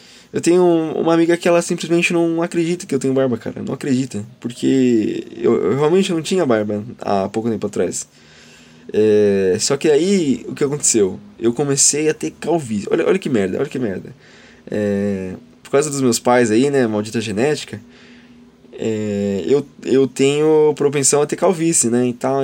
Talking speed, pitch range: 175 wpm, 120-160 Hz